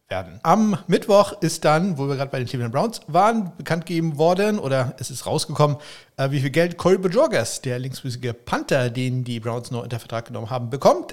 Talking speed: 205 wpm